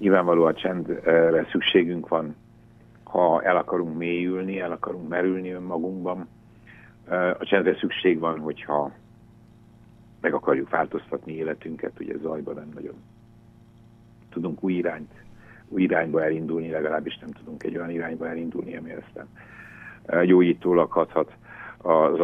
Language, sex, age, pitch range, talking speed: Hungarian, male, 60-79, 85-115 Hz, 120 wpm